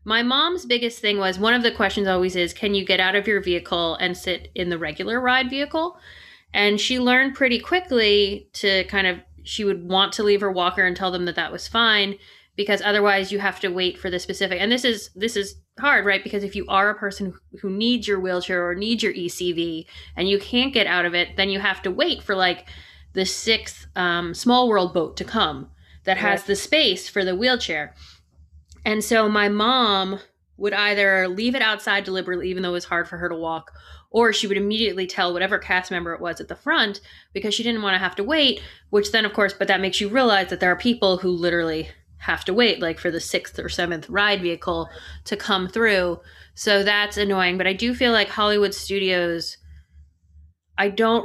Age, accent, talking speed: 20-39, American, 220 wpm